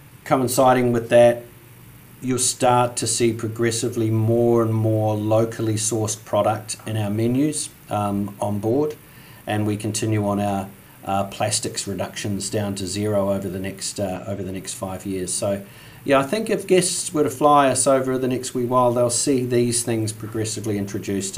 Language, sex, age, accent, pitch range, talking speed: English, male, 40-59, Australian, 100-125 Hz, 170 wpm